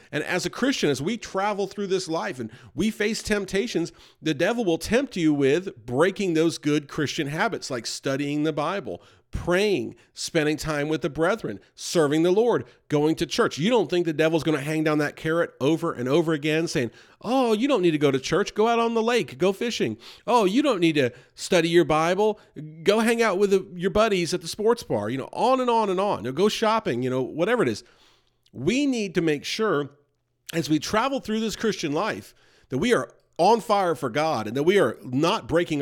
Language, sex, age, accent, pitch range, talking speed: English, male, 40-59, American, 150-205 Hz, 215 wpm